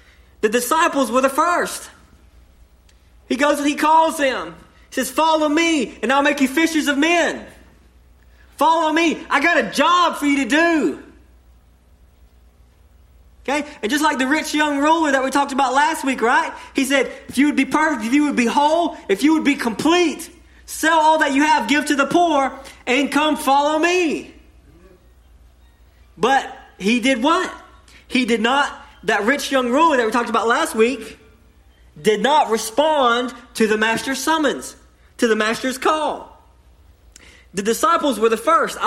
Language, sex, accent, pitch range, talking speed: English, male, American, 220-305 Hz, 170 wpm